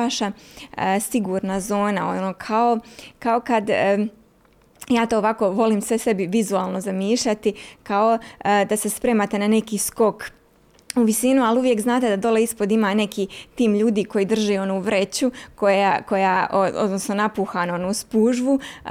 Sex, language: female, Croatian